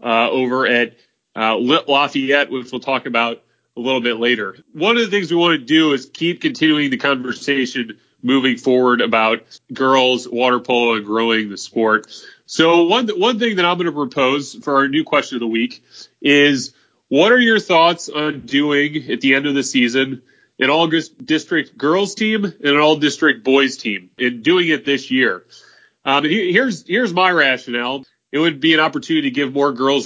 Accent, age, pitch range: American, 30-49, 125-155 Hz